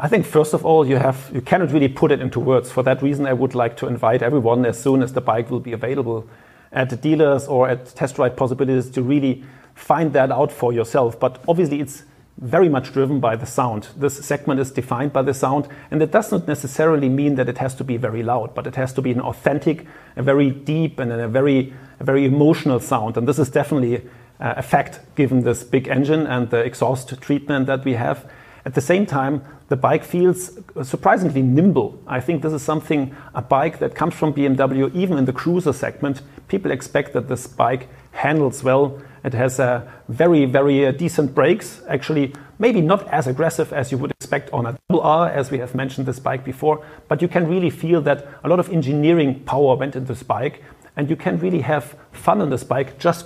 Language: English